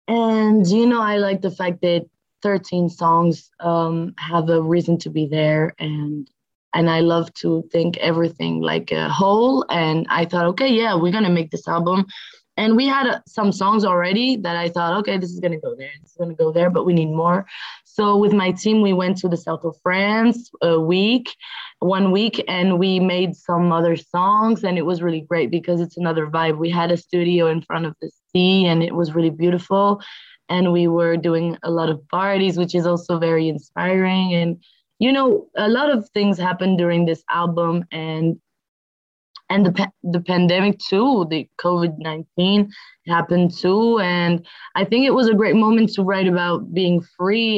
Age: 20-39